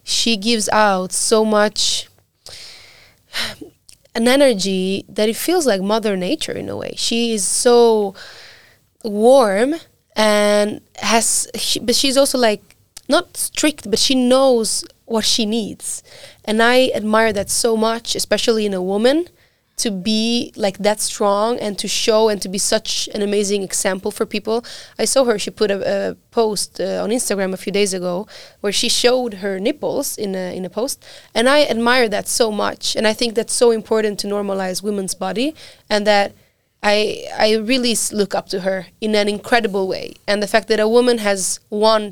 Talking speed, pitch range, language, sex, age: 175 wpm, 200-235 Hz, Finnish, female, 20-39